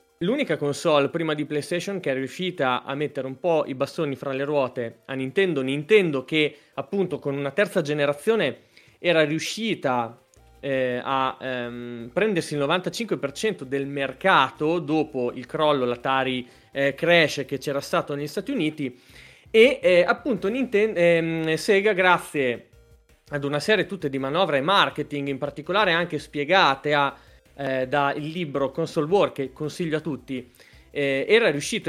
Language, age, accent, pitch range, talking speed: Italian, 30-49, native, 135-180 Hz, 150 wpm